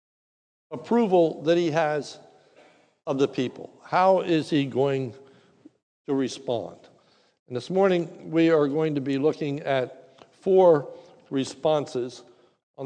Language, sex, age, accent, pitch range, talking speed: English, male, 60-79, American, 145-185 Hz, 120 wpm